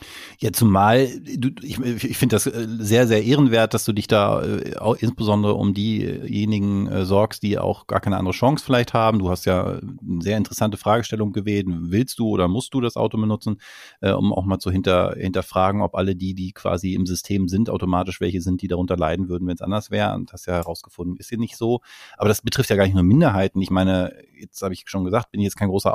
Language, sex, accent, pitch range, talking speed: German, male, German, 95-115 Hz, 215 wpm